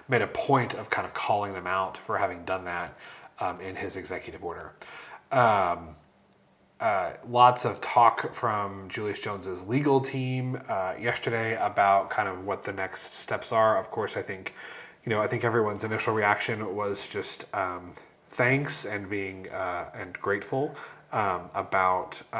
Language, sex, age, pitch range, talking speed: English, male, 30-49, 95-125 Hz, 160 wpm